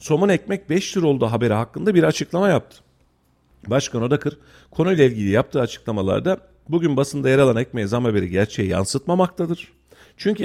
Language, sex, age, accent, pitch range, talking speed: Turkish, male, 40-59, native, 100-155 Hz, 150 wpm